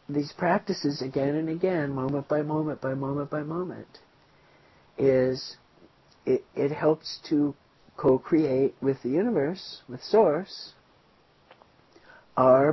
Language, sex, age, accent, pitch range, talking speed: English, male, 50-69, American, 135-160 Hz, 115 wpm